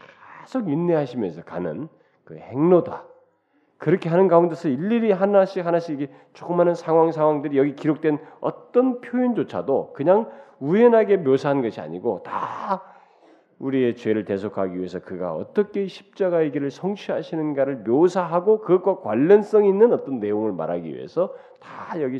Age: 40-59